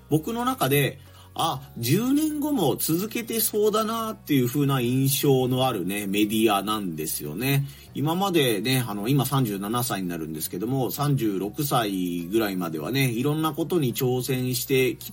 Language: Japanese